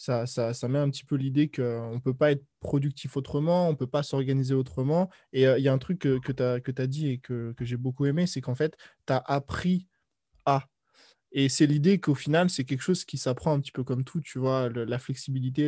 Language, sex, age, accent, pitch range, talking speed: French, male, 20-39, French, 125-150 Hz, 255 wpm